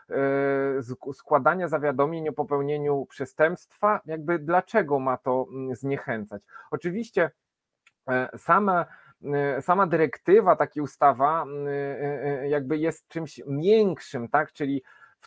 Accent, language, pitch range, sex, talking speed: native, Polish, 140-160 Hz, male, 90 wpm